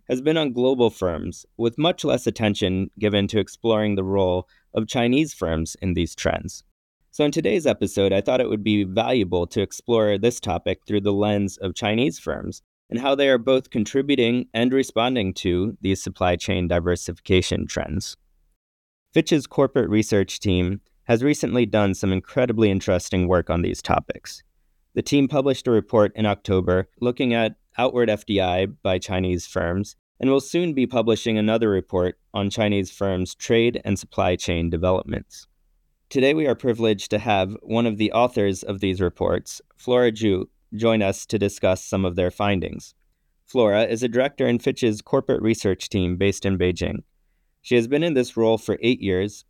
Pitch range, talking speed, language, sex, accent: 95-120 Hz, 170 wpm, English, male, American